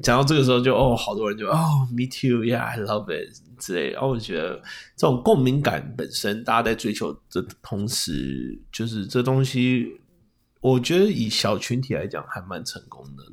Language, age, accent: Chinese, 30-49, native